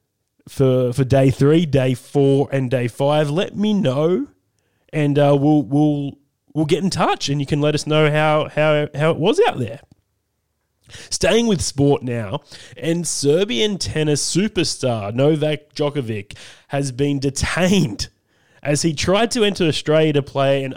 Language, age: English, 20-39